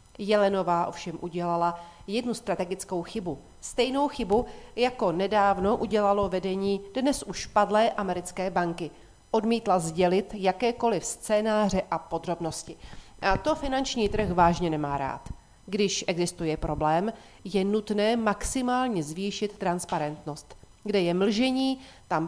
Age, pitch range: 40-59, 180-225 Hz